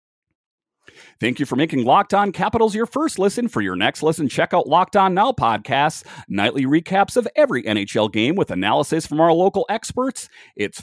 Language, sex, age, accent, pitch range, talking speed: English, male, 40-59, American, 125-200 Hz, 185 wpm